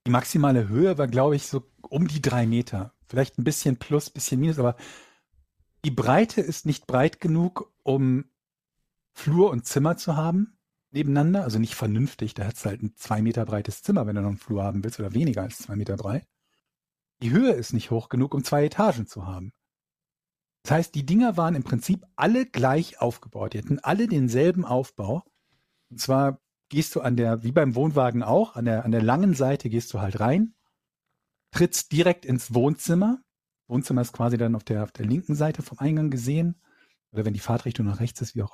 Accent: German